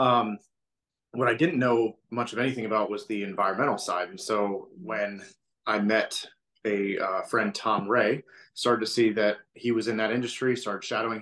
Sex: male